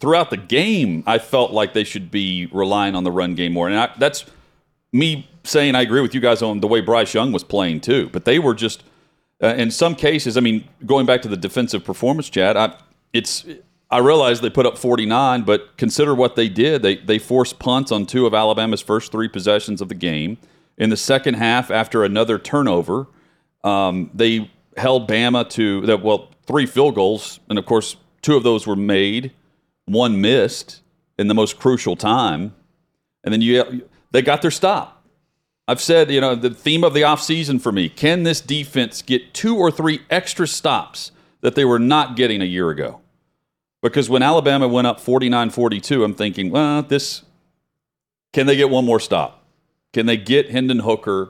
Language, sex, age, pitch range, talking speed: English, male, 40-59, 105-135 Hz, 190 wpm